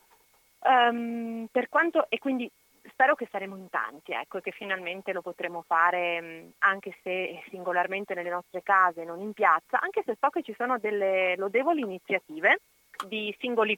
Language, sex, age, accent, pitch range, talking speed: Italian, female, 30-49, native, 185-230 Hz, 155 wpm